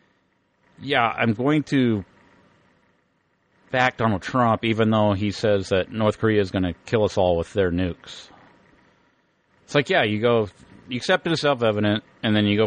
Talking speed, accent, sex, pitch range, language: 175 wpm, American, male, 95-120 Hz, English